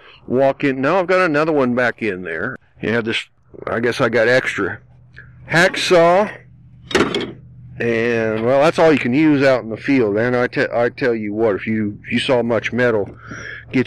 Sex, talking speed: male, 190 wpm